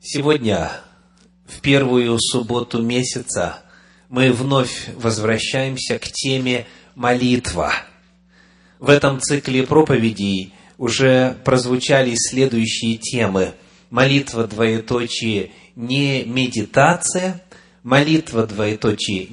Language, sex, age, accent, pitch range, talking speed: Russian, male, 30-49, native, 120-175 Hz, 80 wpm